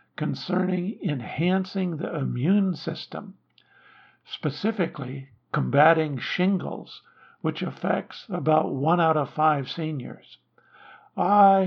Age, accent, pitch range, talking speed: 50-69, American, 150-190 Hz, 85 wpm